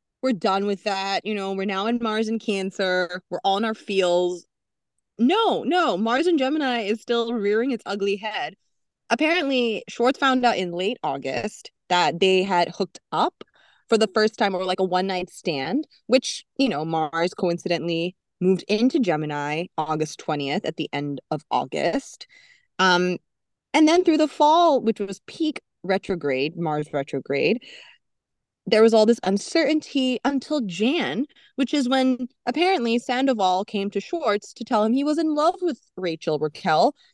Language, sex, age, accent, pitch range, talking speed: English, female, 20-39, American, 185-265 Hz, 165 wpm